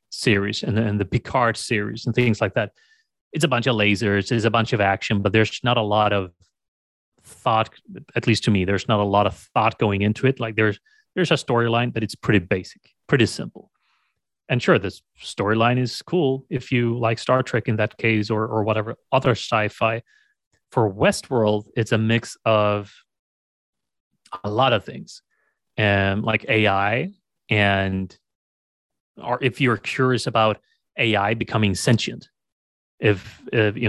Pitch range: 100-120 Hz